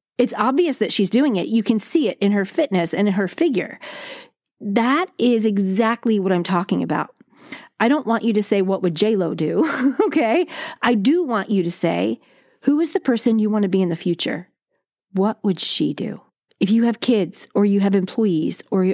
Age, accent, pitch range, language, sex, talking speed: 30-49, American, 190-235 Hz, English, female, 205 wpm